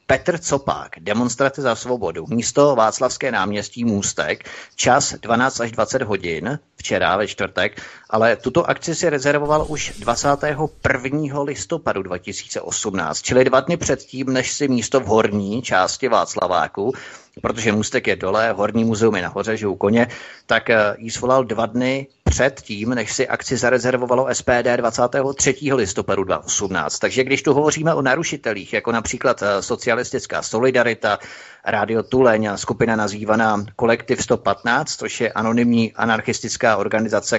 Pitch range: 110-135 Hz